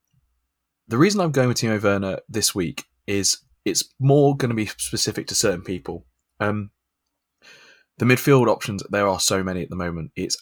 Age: 20-39